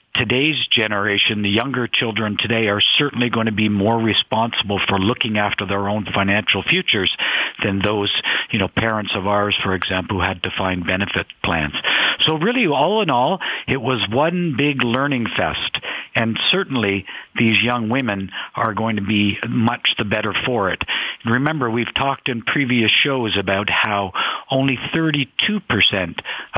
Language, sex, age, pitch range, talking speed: English, male, 50-69, 100-130 Hz, 160 wpm